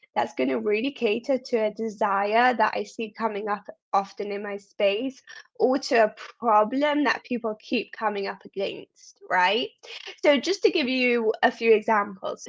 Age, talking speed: 10-29, 175 wpm